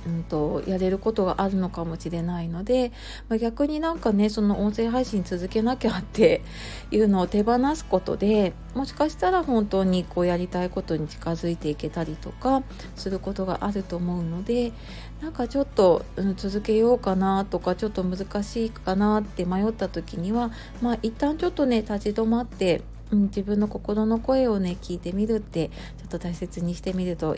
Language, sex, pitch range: Japanese, female, 175-225 Hz